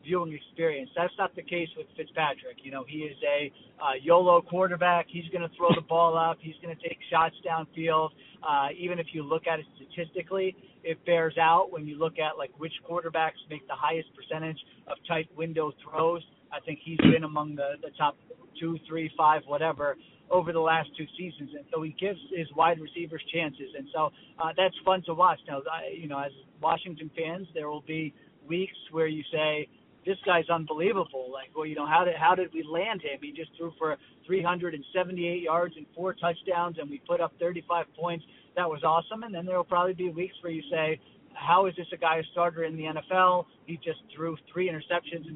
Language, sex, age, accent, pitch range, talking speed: English, male, 40-59, American, 155-175 Hz, 205 wpm